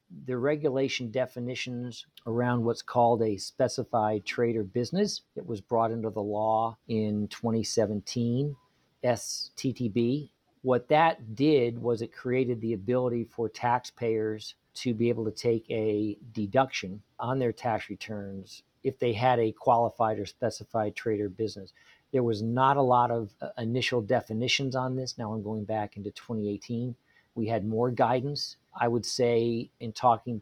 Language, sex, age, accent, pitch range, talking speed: English, male, 50-69, American, 105-125 Hz, 145 wpm